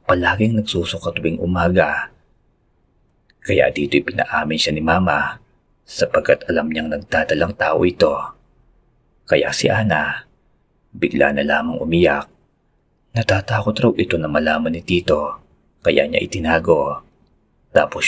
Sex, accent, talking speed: male, native, 115 wpm